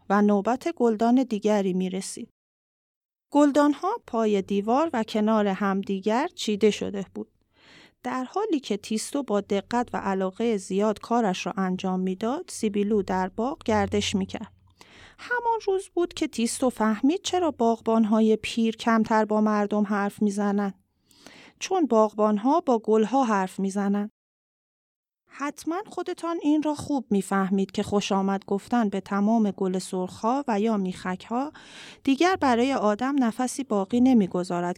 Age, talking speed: 30-49, 140 wpm